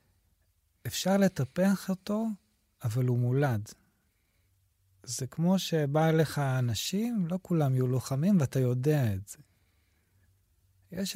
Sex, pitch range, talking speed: male, 105-175 Hz, 110 wpm